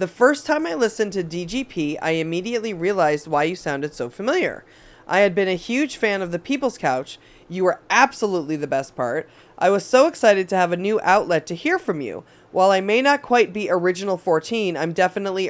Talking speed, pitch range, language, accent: 210 wpm, 160-205 Hz, English, American